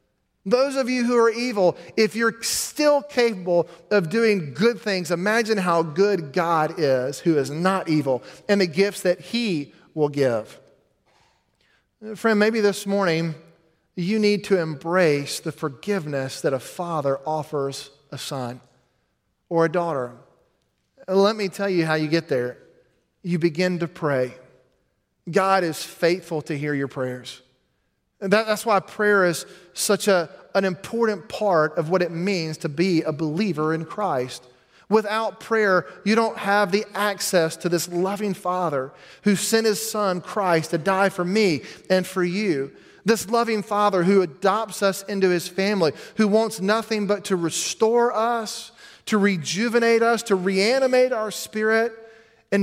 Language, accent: English, American